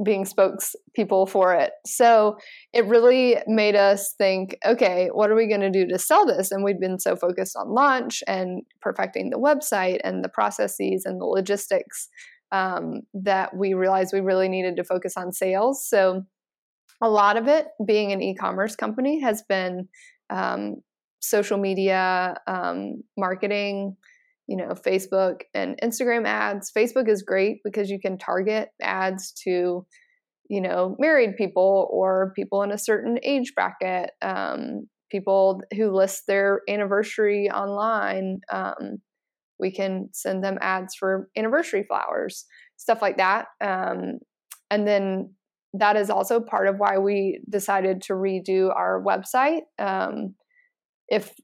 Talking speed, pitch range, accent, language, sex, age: 145 wpm, 190-225 Hz, American, English, female, 20-39